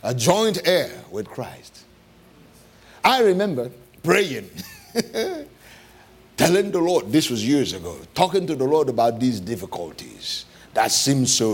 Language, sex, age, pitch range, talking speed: English, male, 60-79, 130-190 Hz, 130 wpm